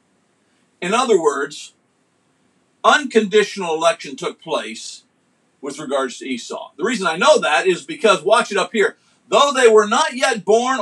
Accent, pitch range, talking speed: American, 195-285 Hz, 155 wpm